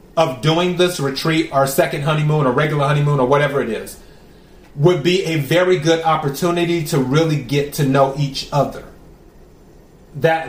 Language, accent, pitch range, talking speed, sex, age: English, American, 145-175 Hz, 160 wpm, male, 30-49